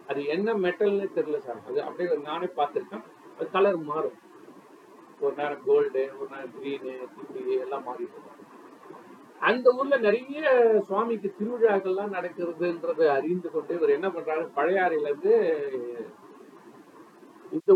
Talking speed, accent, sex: 40 wpm, native, male